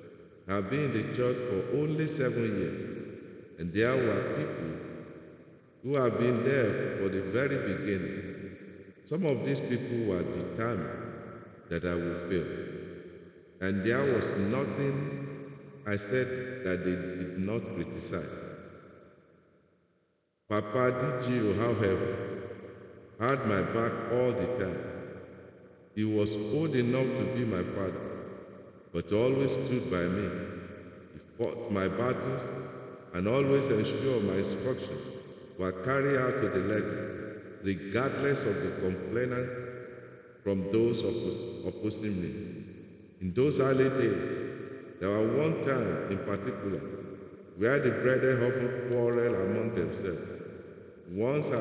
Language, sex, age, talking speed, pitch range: English, male, 50-69, 120 wpm, 95-125 Hz